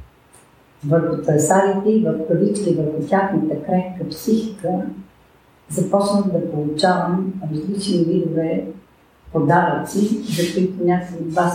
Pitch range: 155-195 Hz